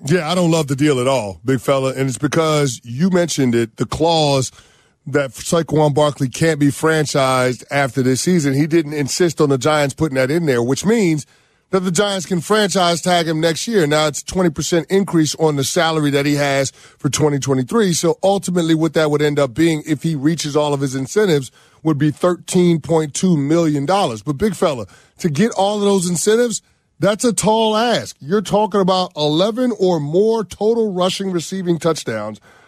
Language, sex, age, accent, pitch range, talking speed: English, male, 30-49, American, 145-190 Hz, 190 wpm